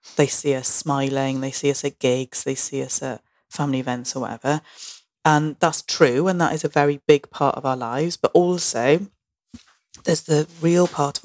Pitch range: 135-160 Hz